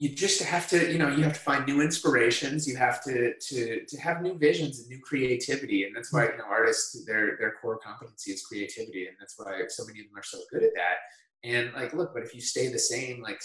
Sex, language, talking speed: male, English, 255 wpm